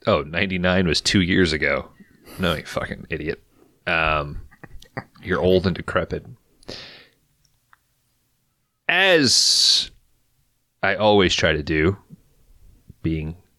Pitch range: 85-110 Hz